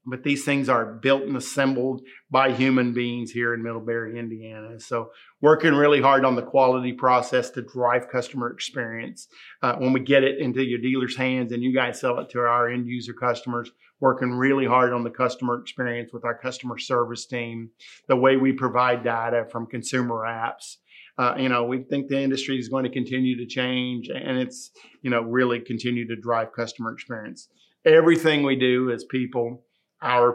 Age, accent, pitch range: 50-69, American, 120-130 Hz